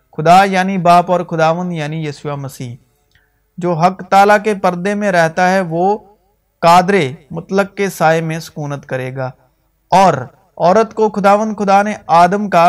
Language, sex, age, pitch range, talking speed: Urdu, male, 50-69, 155-195 Hz, 155 wpm